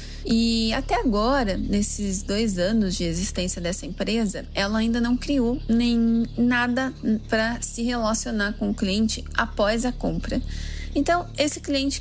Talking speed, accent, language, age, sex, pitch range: 140 wpm, Brazilian, Portuguese, 20-39, female, 205-245 Hz